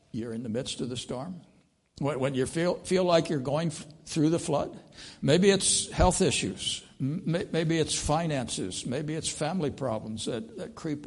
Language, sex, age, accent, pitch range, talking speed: English, male, 60-79, American, 120-155 Hz, 170 wpm